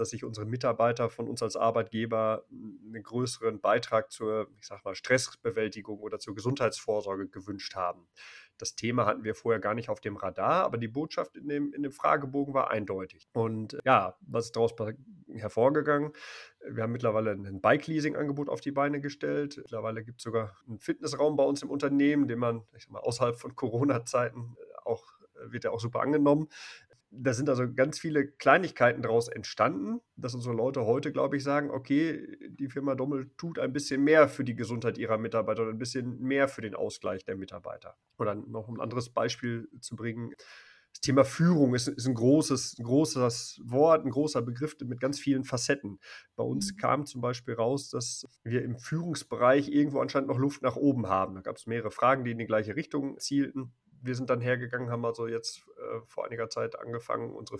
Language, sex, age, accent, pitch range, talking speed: German, male, 30-49, German, 115-140 Hz, 190 wpm